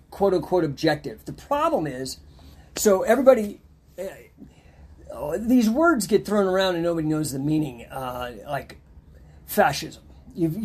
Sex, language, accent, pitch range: male, English, American, 120-175 Hz